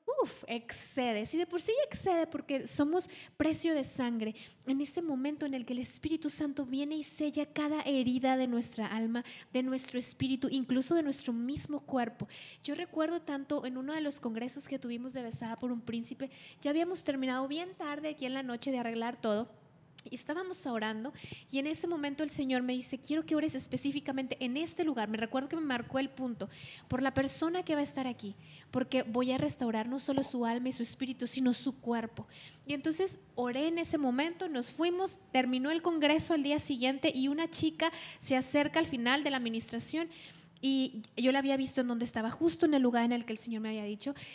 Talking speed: 210 wpm